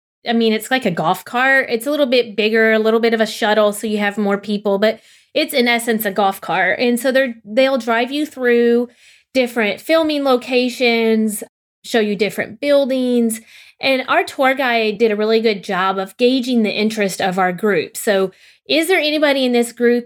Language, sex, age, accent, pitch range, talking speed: English, female, 30-49, American, 215-265 Hz, 200 wpm